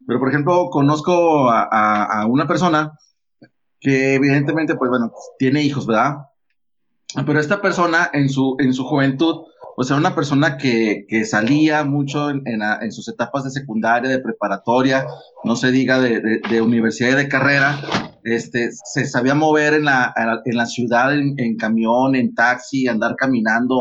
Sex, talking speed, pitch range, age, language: male, 180 wpm, 130-175 Hz, 30-49, Spanish